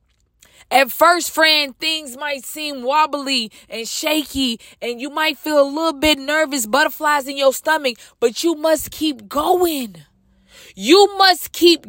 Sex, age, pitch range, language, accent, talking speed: female, 20-39, 270-320 Hz, English, American, 145 wpm